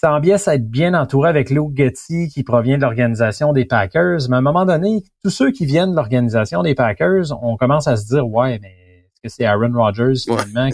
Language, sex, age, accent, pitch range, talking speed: French, male, 30-49, Canadian, 115-145 Hz, 225 wpm